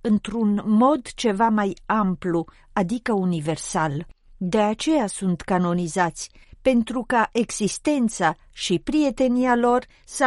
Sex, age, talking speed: female, 50-69, 105 wpm